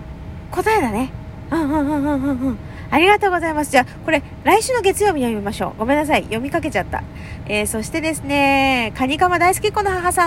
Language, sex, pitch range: Japanese, female, 285-390 Hz